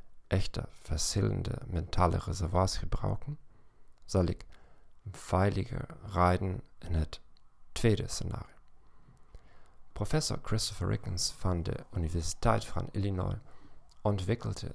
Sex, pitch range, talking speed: male, 90-115 Hz, 90 wpm